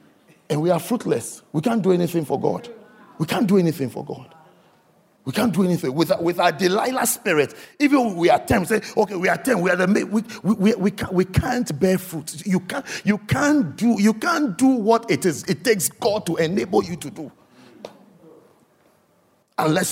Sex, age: male, 50-69